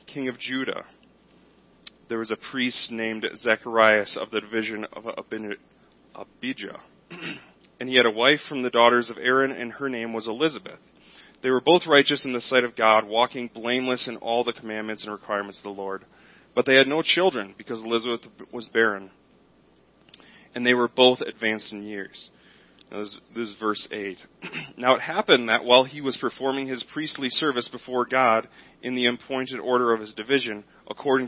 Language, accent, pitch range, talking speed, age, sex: English, American, 110-130 Hz, 175 wpm, 30-49, male